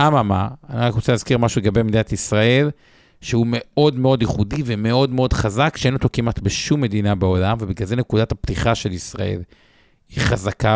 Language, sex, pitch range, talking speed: Hebrew, male, 105-130 Hz, 165 wpm